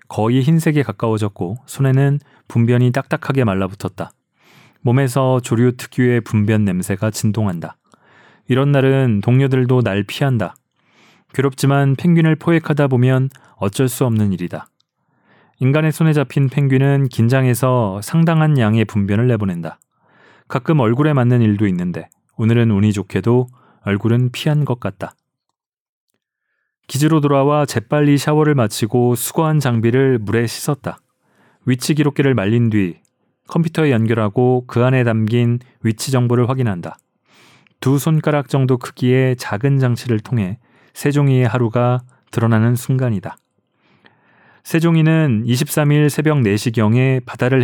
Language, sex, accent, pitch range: Korean, male, native, 110-140 Hz